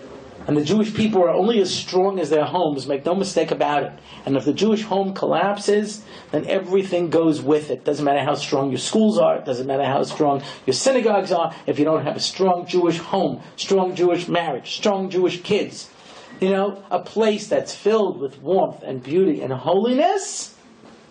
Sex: male